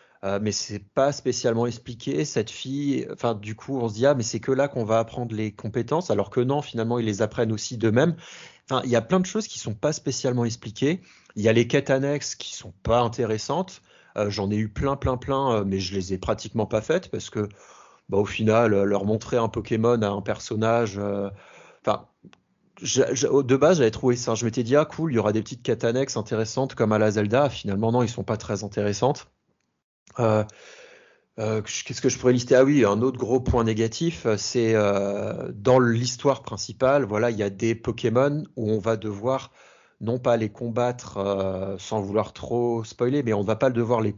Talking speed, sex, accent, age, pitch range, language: 215 wpm, male, French, 30-49, 105-130 Hz, French